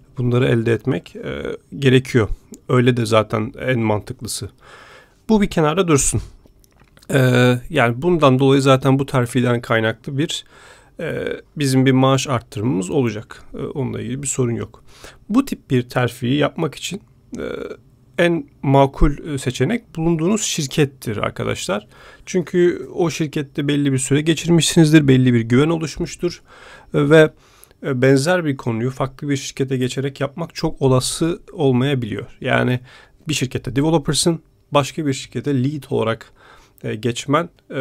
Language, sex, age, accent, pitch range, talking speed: Turkish, male, 40-59, native, 115-145 Hz, 130 wpm